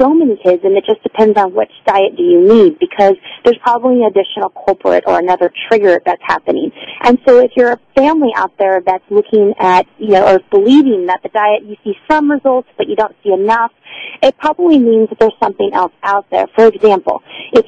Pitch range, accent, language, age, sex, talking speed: 195-260 Hz, American, English, 30-49, female, 215 wpm